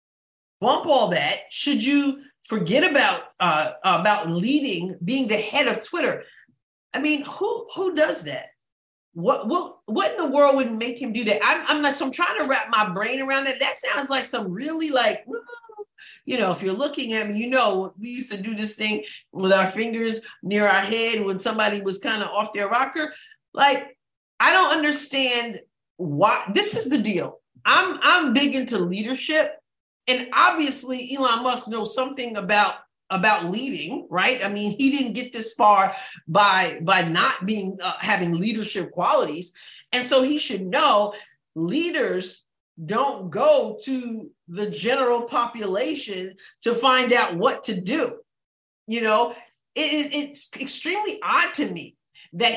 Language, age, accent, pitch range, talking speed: English, 40-59, American, 210-285 Hz, 165 wpm